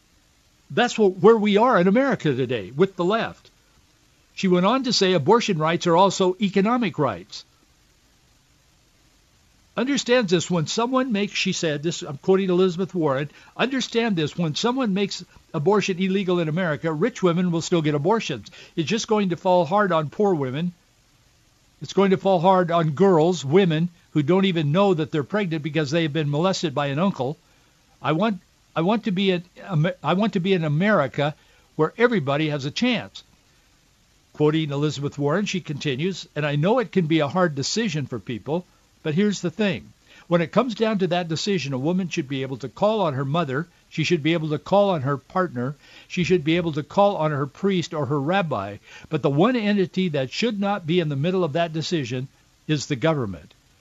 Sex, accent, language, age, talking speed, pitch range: male, American, English, 60-79, 195 wpm, 150-195 Hz